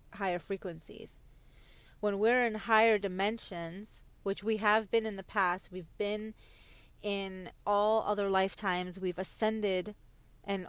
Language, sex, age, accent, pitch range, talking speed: English, female, 30-49, American, 195-225 Hz, 130 wpm